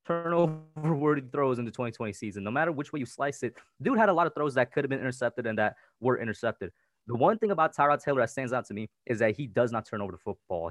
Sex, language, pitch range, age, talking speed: male, English, 120-145 Hz, 20-39, 275 wpm